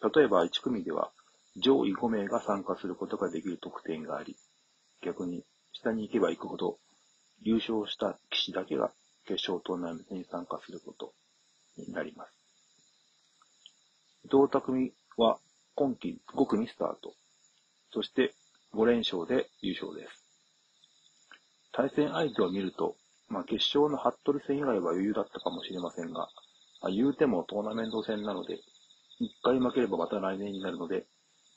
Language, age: Japanese, 40-59